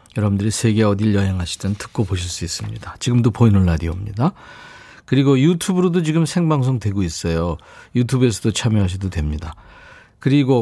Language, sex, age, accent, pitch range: Korean, male, 40-59, native, 100-145 Hz